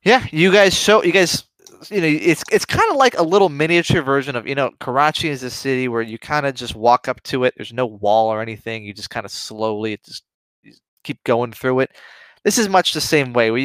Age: 20-39